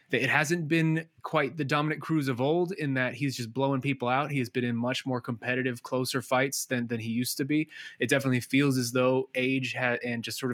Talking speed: 235 wpm